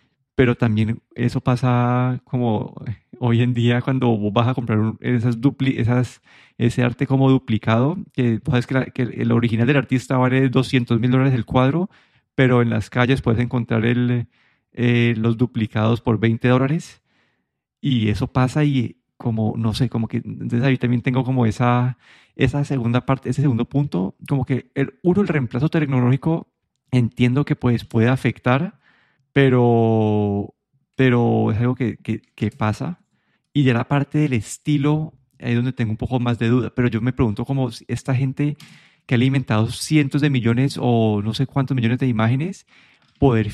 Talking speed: 170 wpm